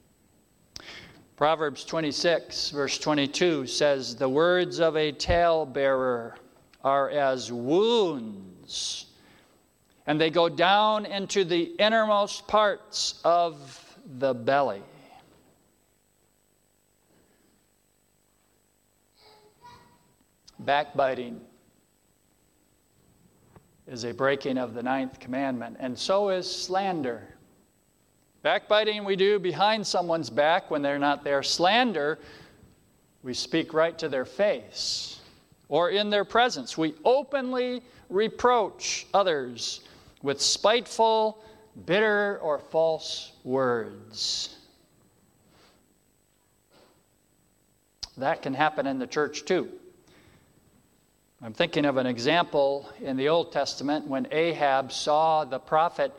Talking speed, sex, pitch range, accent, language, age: 95 wpm, male, 135-200 Hz, American, English, 50-69